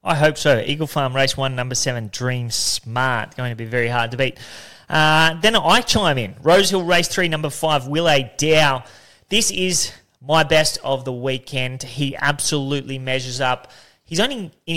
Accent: Australian